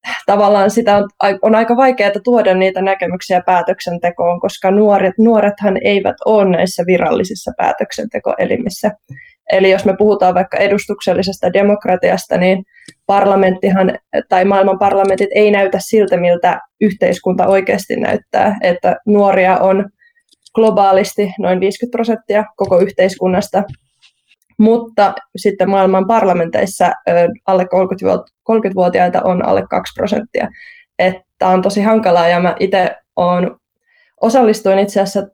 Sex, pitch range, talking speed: female, 185-215 Hz, 105 wpm